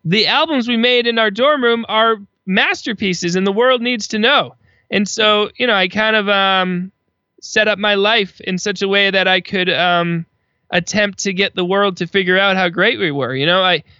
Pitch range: 160-195 Hz